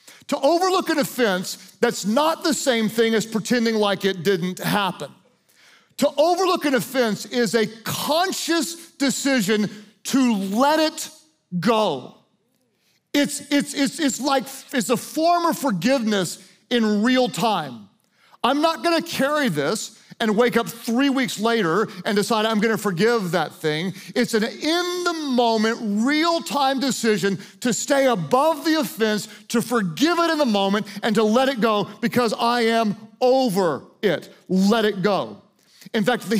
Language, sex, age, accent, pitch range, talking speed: English, male, 40-59, American, 205-270 Hz, 155 wpm